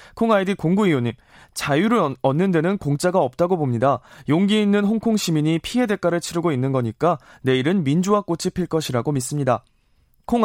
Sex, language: male, Korean